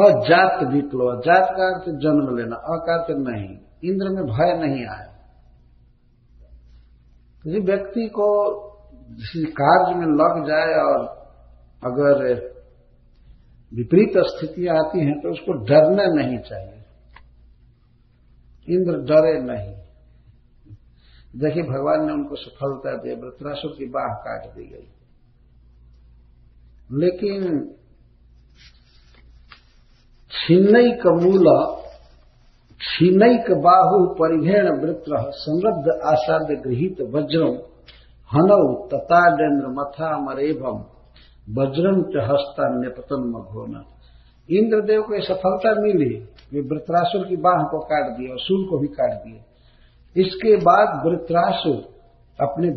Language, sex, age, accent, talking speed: Hindi, male, 50-69, native, 100 wpm